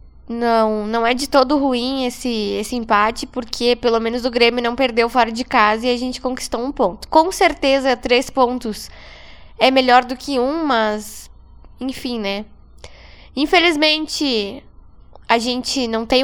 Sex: female